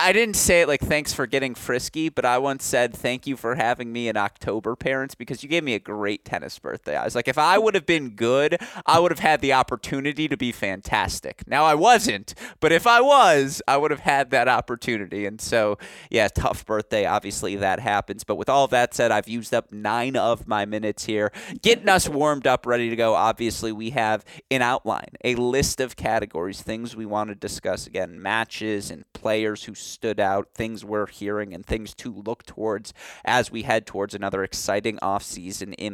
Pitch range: 105-130 Hz